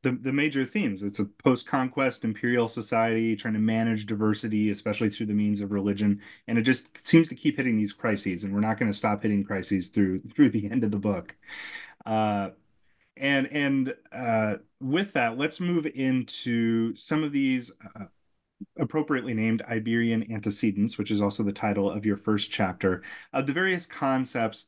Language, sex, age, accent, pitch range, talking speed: English, male, 30-49, American, 105-130 Hz, 180 wpm